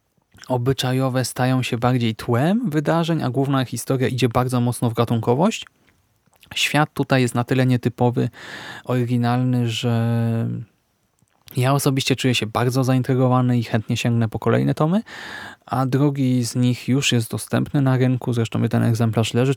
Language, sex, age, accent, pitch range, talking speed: Polish, male, 20-39, native, 120-135 Hz, 145 wpm